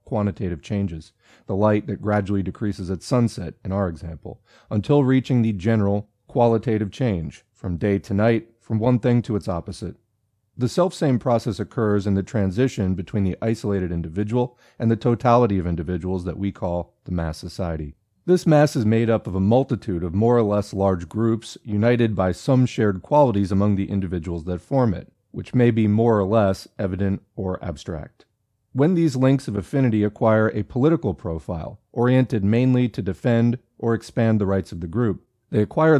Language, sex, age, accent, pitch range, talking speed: English, male, 40-59, American, 95-120 Hz, 175 wpm